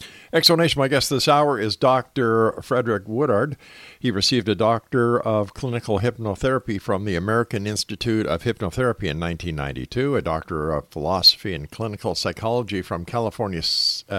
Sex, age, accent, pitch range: male, 50-69, American, 90-120 Hz